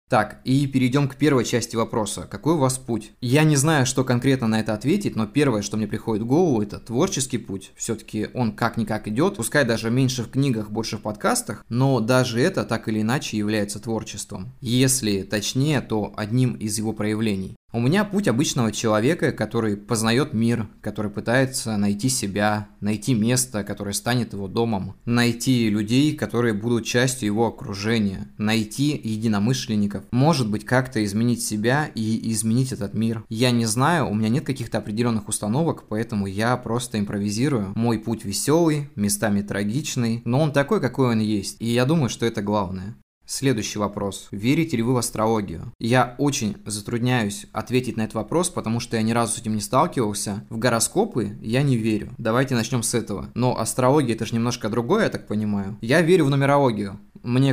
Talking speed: 175 wpm